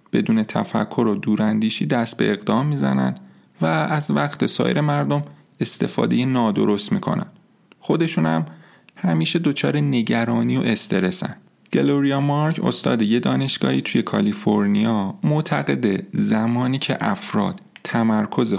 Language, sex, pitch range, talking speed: Persian, male, 105-150 Hz, 115 wpm